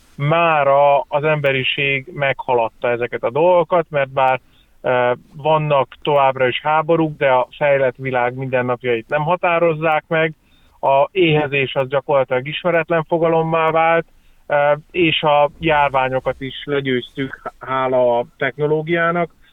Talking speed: 115 wpm